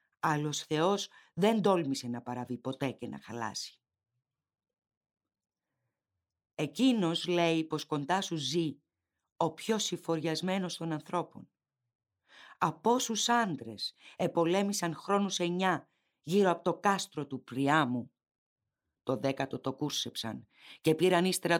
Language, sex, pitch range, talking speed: Greek, female, 135-190 Hz, 110 wpm